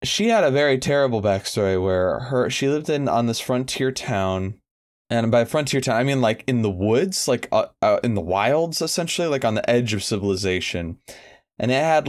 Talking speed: 205 wpm